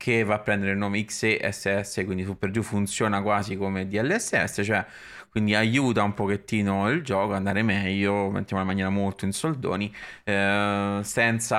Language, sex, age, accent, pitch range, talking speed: Italian, male, 20-39, native, 100-110 Hz, 165 wpm